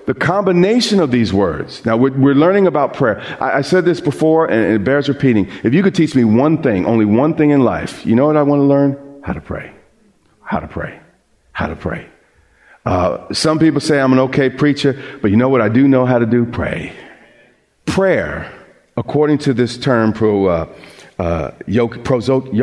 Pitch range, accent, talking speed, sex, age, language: 120-165 Hz, American, 195 wpm, male, 40-59, English